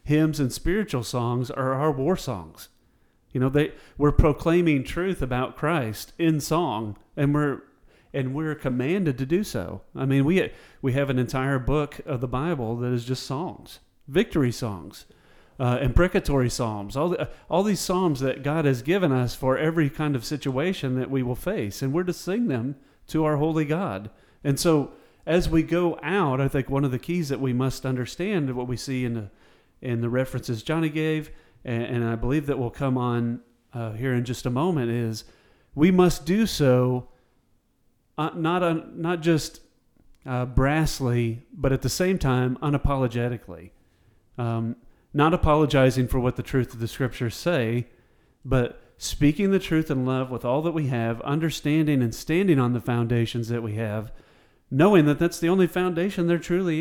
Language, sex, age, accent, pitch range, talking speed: English, male, 40-59, American, 120-160 Hz, 180 wpm